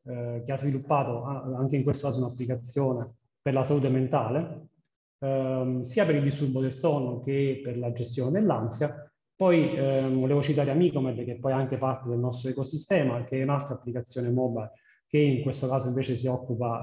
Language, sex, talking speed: Italian, male, 180 wpm